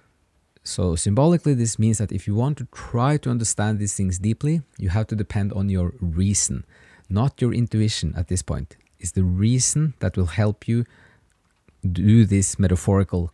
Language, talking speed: English, 170 wpm